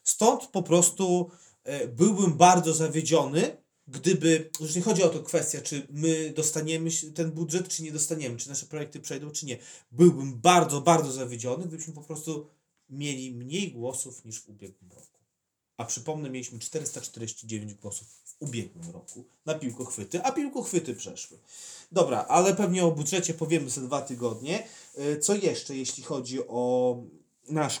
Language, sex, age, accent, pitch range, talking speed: Polish, male, 30-49, native, 125-165 Hz, 145 wpm